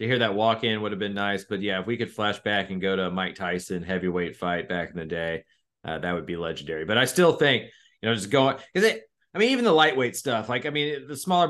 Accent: American